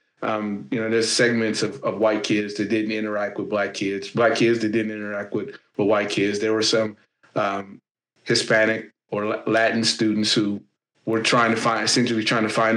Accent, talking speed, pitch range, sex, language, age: American, 195 wpm, 105-125 Hz, male, English, 30-49